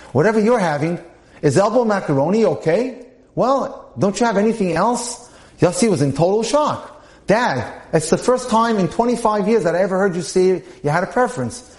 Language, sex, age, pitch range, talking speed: English, male, 30-49, 130-200 Hz, 185 wpm